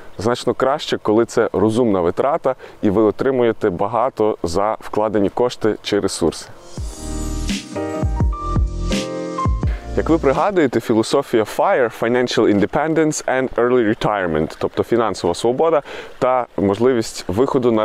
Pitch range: 105-135 Hz